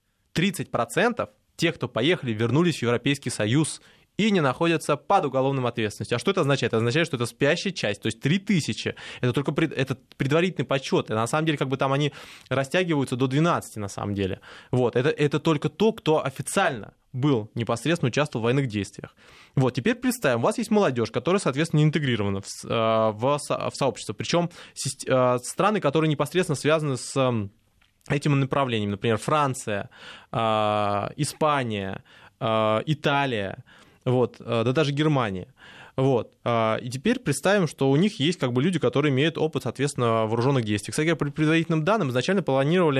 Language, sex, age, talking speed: Russian, male, 20-39, 160 wpm